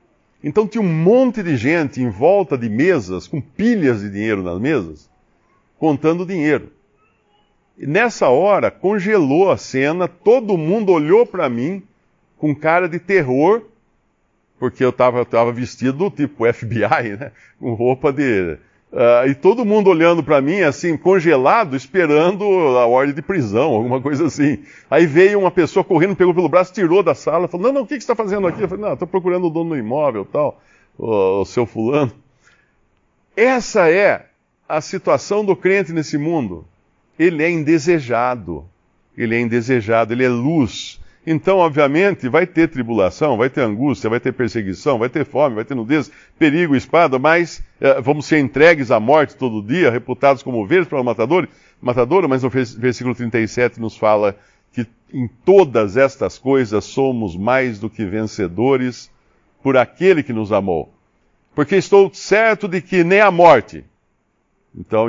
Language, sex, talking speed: Portuguese, male, 165 wpm